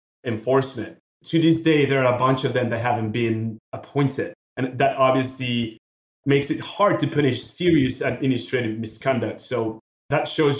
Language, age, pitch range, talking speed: English, 30-49, 115-145 Hz, 160 wpm